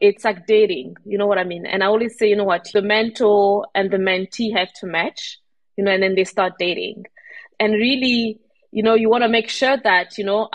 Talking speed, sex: 240 wpm, female